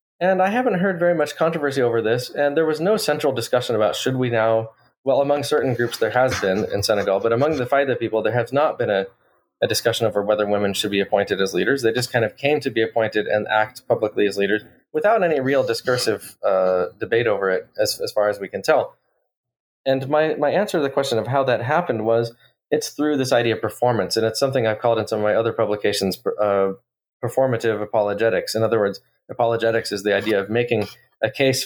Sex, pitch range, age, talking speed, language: male, 110-140 Hz, 20-39, 225 wpm, English